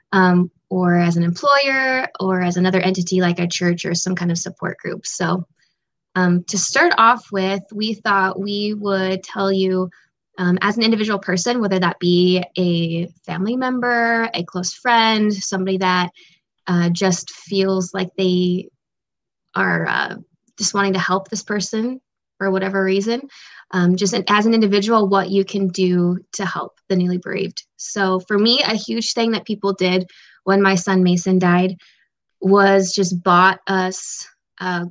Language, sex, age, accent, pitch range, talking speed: English, female, 20-39, American, 180-200 Hz, 160 wpm